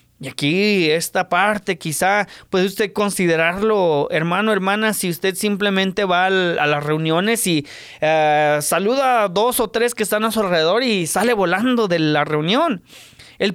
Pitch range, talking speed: 160-220 Hz, 155 wpm